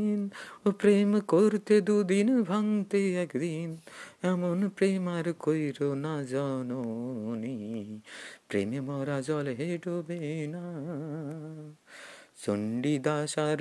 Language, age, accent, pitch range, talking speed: Bengali, 50-69, native, 150-200 Hz, 75 wpm